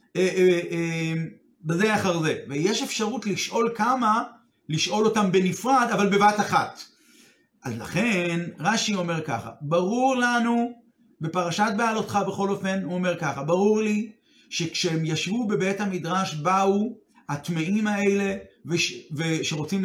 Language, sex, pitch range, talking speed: Hebrew, male, 170-225 Hz, 125 wpm